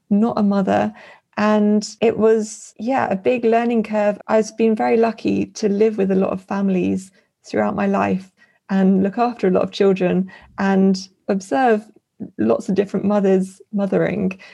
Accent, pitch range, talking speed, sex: British, 190-215 Hz, 160 wpm, female